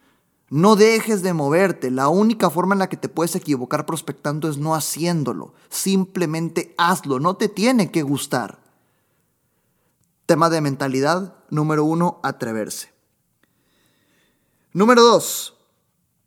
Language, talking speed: Spanish, 120 wpm